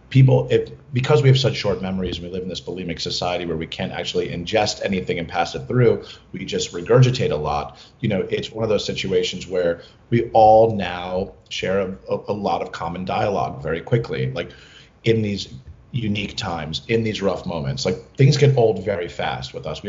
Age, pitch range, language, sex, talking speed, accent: 30-49, 95-130 Hz, English, male, 200 wpm, American